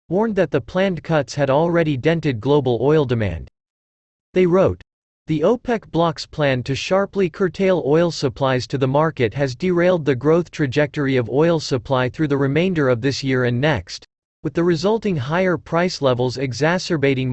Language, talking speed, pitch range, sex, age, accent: English, 165 wpm, 130-170 Hz, male, 40-59, American